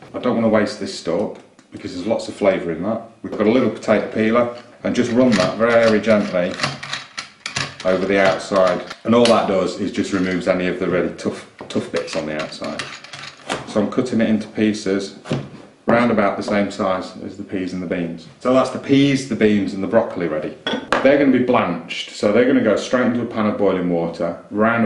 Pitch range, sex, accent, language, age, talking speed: 90-115 Hz, male, British, English, 30-49, 220 wpm